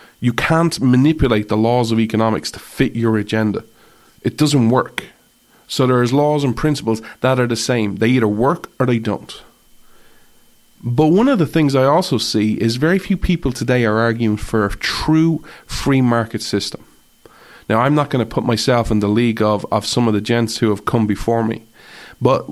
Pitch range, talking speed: 110-130 Hz, 190 wpm